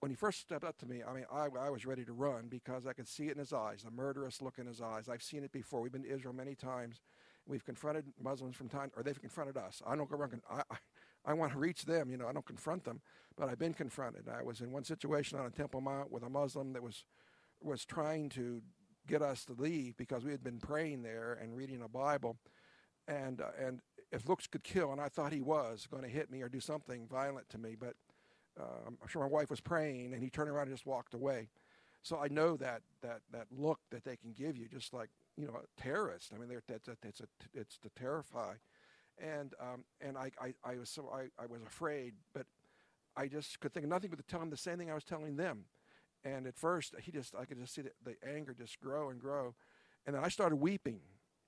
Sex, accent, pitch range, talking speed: male, American, 125-150 Hz, 255 wpm